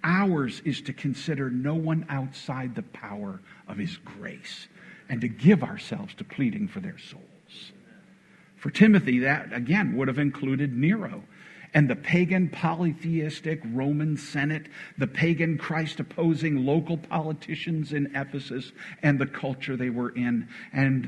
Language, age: English, 60-79